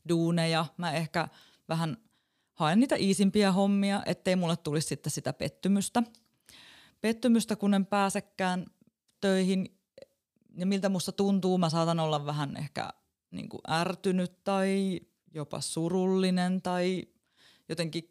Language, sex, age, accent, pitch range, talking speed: Finnish, female, 20-39, native, 160-205 Hz, 115 wpm